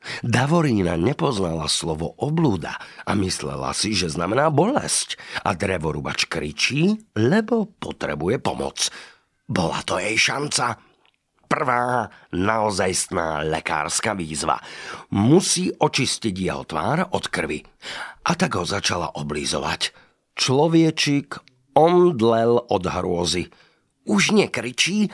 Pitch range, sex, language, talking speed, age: 85-125 Hz, male, Slovak, 100 wpm, 50-69